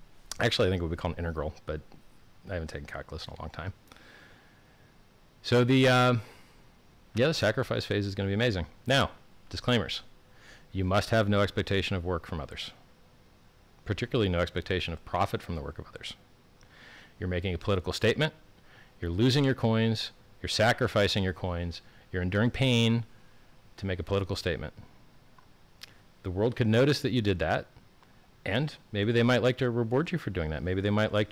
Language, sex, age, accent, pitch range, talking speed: English, male, 40-59, American, 90-120 Hz, 180 wpm